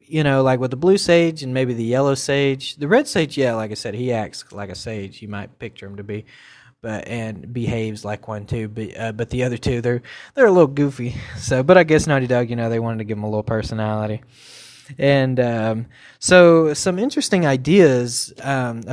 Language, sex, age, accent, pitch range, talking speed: English, male, 20-39, American, 115-150 Hz, 220 wpm